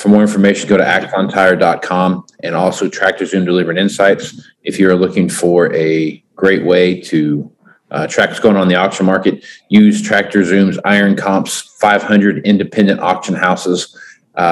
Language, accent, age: English, American, 40-59